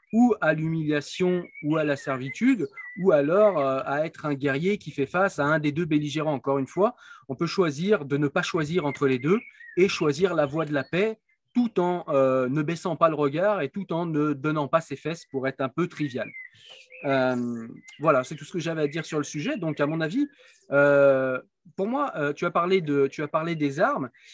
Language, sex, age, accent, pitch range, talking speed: French, male, 30-49, French, 145-185 Hz, 225 wpm